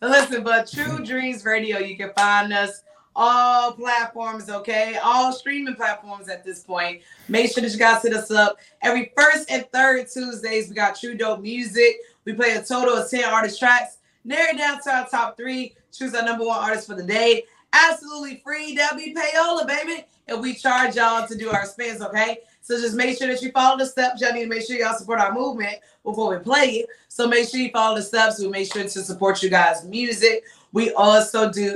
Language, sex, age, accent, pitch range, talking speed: English, female, 20-39, American, 205-245 Hz, 215 wpm